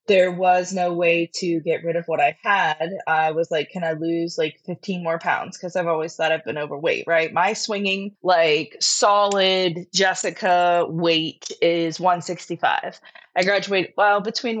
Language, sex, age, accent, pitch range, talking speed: English, female, 20-39, American, 170-205 Hz, 170 wpm